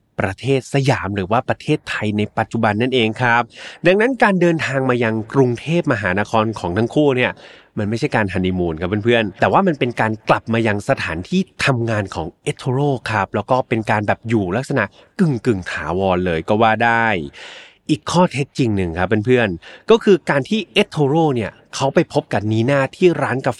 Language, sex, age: Thai, male, 20-39